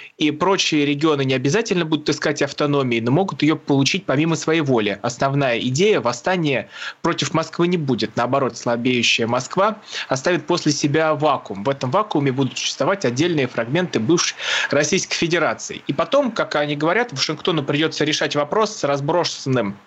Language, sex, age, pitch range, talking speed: Russian, male, 20-39, 135-170 Hz, 155 wpm